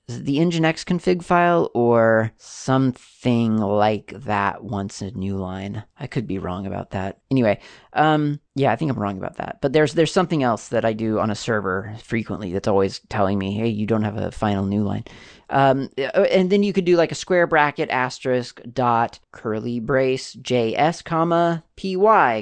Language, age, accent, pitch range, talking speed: English, 30-49, American, 110-145 Hz, 190 wpm